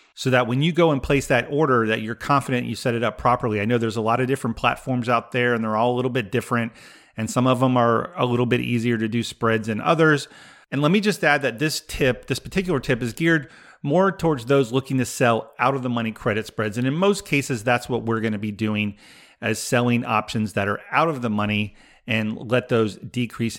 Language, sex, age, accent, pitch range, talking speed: English, male, 40-59, American, 115-140 Hz, 245 wpm